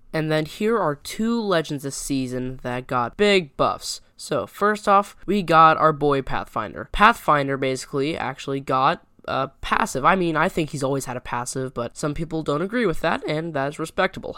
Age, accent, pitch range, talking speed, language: 10-29, American, 135-185 Hz, 190 wpm, English